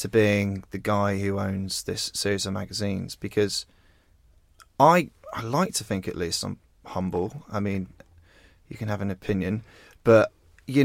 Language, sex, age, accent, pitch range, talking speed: English, male, 30-49, British, 100-135 Hz, 160 wpm